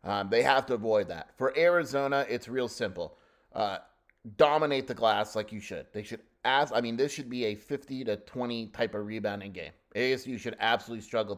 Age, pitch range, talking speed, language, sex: 30-49, 105-125 Hz, 200 wpm, English, male